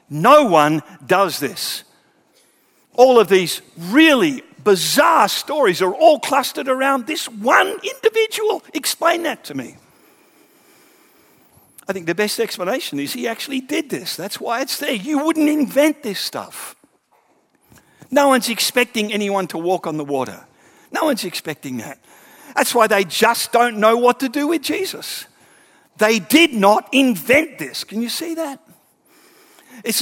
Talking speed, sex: 150 wpm, male